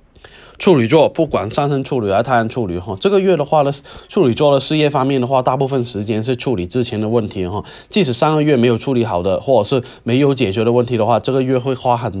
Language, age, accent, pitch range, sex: Chinese, 20-39, native, 115-145 Hz, male